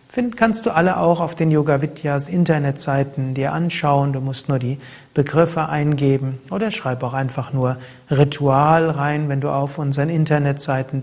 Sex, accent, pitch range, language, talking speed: male, German, 135-170 Hz, German, 160 wpm